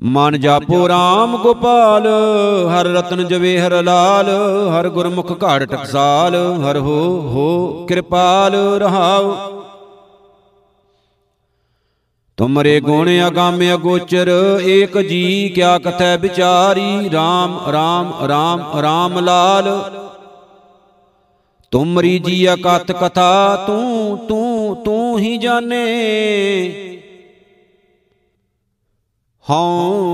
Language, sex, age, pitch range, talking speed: Punjabi, male, 50-69, 175-195 Hz, 80 wpm